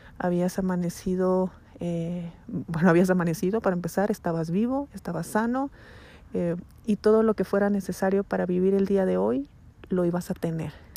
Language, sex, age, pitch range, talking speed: Spanish, female, 30-49, 180-215 Hz, 160 wpm